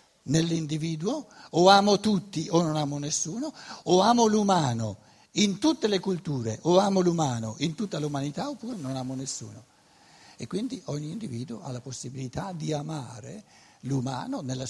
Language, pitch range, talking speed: Italian, 125-170 Hz, 145 wpm